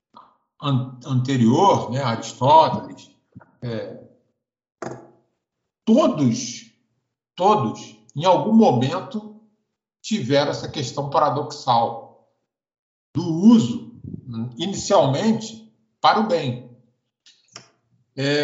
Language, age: Portuguese, 60-79